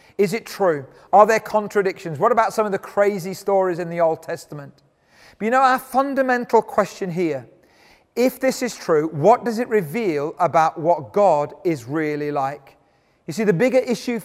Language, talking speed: English, 180 wpm